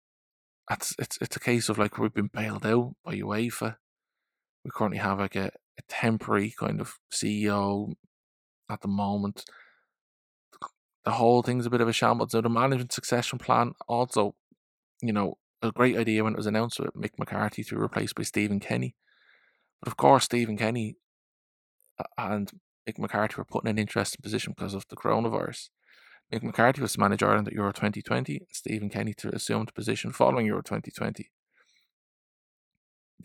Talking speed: 170 wpm